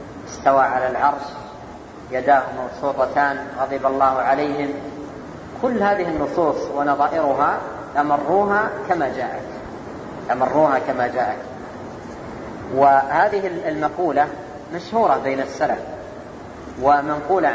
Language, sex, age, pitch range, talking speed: Arabic, female, 30-49, 140-170 Hz, 80 wpm